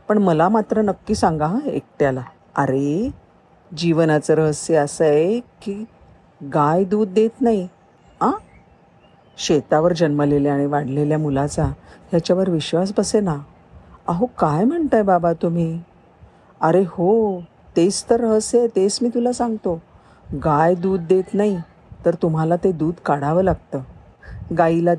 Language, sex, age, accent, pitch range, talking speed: Marathi, female, 50-69, native, 145-180 Hz, 125 wpm